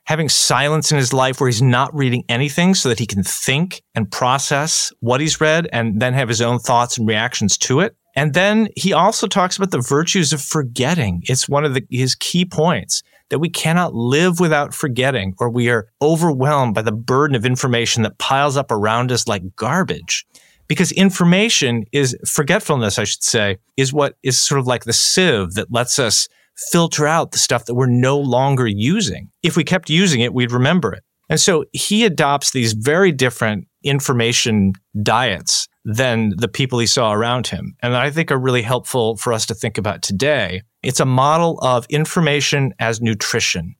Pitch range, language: 120-155 Hz, English